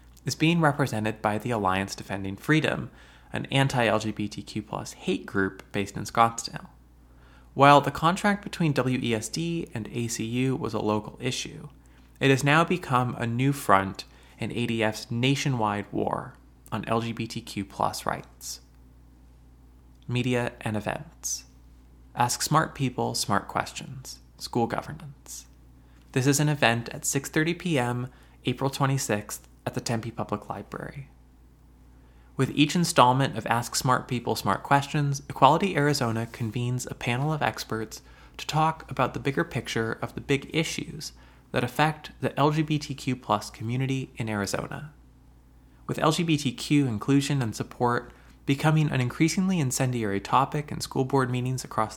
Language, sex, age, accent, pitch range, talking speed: English, male, 20-39, American, 100-140 Hz, 130 wpm